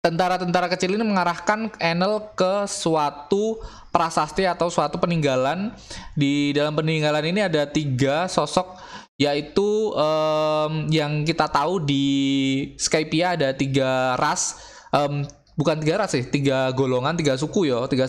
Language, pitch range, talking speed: Indonesian, 140-175 Hz, 130 wpm